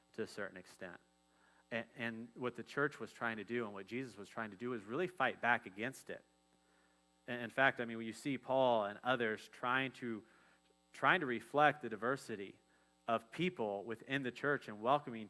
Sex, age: male, 30-49